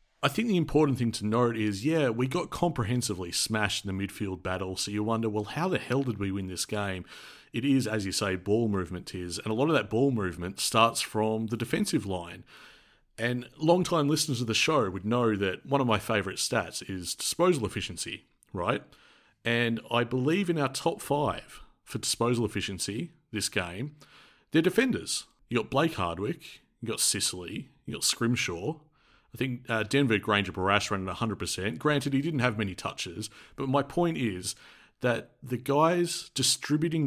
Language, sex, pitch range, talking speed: English, male, 100-130 Hz, 185 wpm